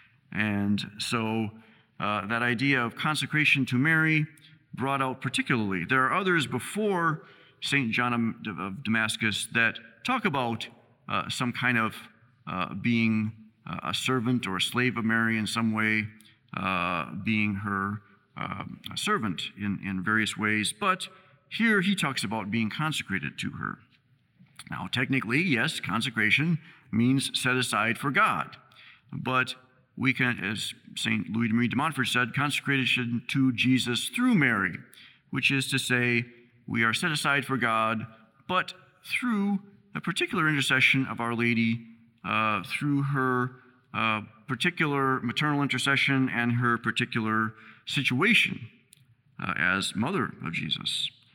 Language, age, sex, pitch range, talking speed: English, 50-69, male, 110-140 Hz, 135 wpm